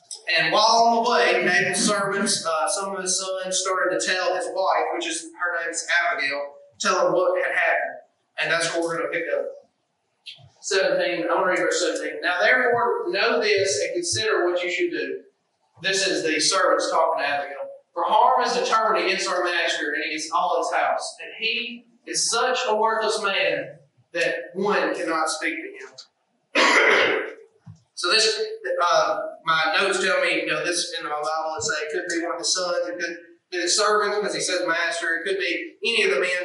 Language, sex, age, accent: English, male, 30-49, American